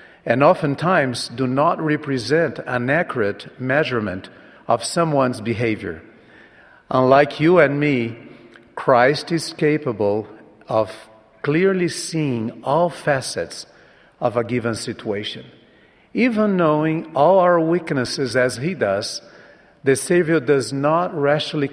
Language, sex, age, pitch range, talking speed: English, male, 50-69, 120-160 Hz, 110 wpm